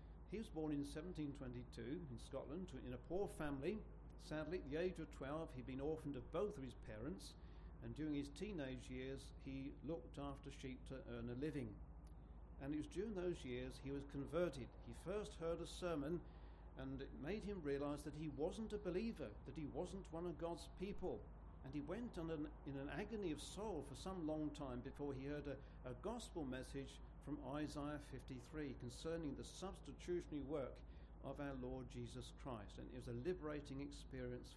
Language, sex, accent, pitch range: English, male, British, 130-160 Hz